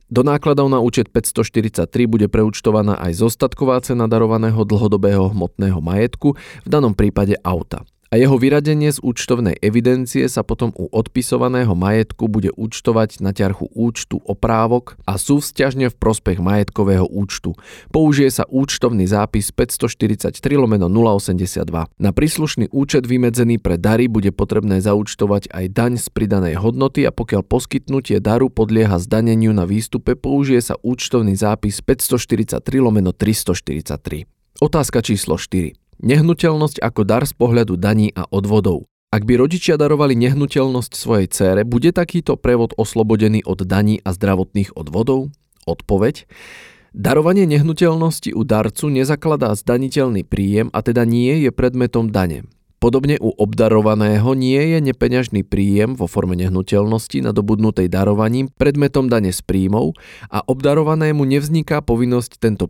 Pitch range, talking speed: 100-130 Hz, 130 wpm